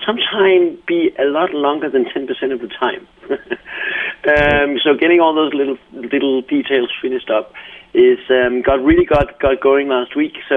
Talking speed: 175 wpm